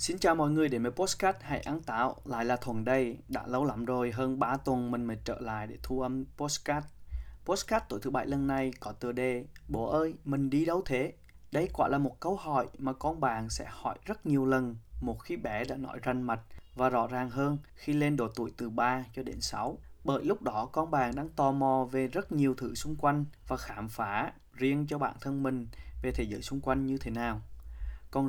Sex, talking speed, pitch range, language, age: male, 230 wpm, 120-145 Hz, Vietnamese, 20-39